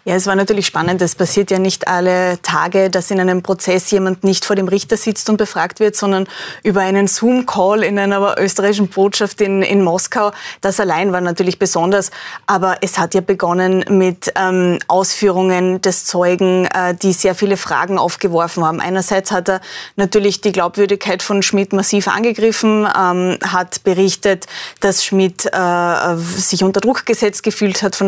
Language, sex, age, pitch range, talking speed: German, female, 20-39, 185-205 Hz, 170 wpm